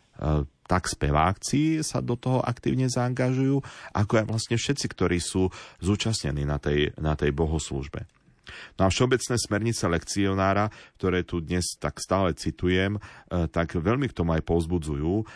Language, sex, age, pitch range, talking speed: Slovak, male, 40-59, 80-110 Hz, 135 wpm